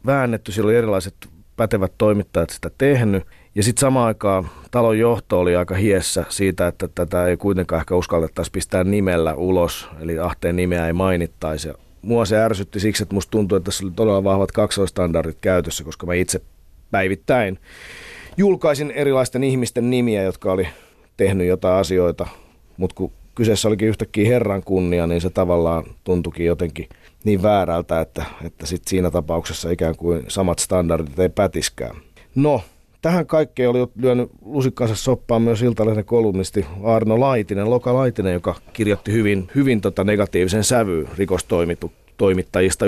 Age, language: 30-49, Finnish